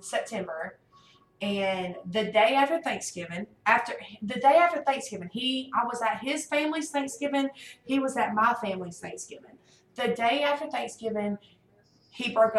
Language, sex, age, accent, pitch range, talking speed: English, female, 20-39, American, 200-275 Hz, 145 wpm